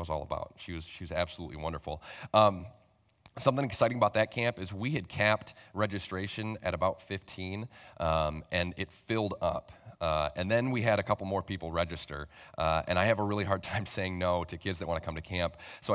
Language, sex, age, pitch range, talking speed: English, male, 30-49, 90-110 Hz, 210 wpm